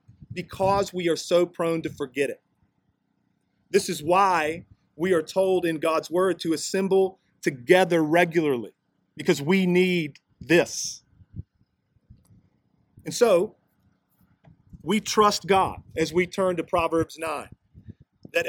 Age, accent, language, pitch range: 40-59, American, English, 145-180 Hz